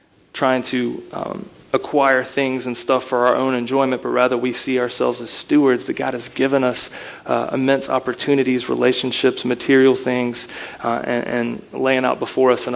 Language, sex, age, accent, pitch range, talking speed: English, male, 30-49, American, 120-130 Hz, 175 wpm